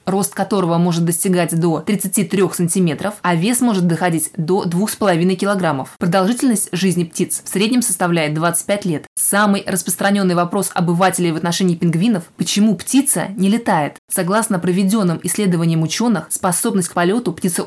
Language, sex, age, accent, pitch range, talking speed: Russian, female, 20-39, native, 175-205 Hz, 140 wpm